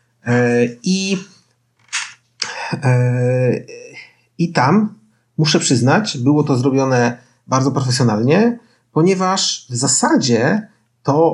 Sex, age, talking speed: male, 40-59, 75 wpm